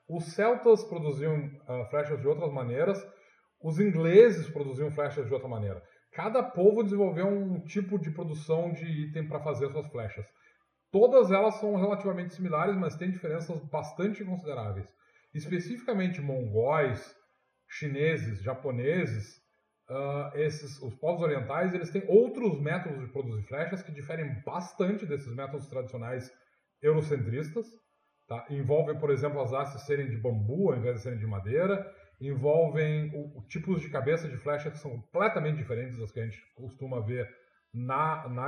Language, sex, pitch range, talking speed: Portuguese, male, 125-170 Hz, 145 wpm